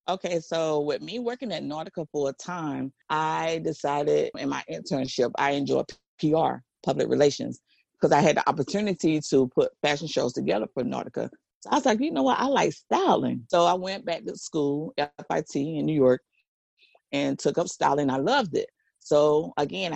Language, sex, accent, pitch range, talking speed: English, female, American, 145-190 Hz, 185 wpm